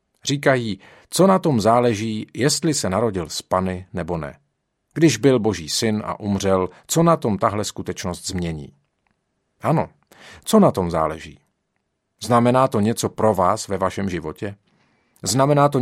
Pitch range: 95-120 Hz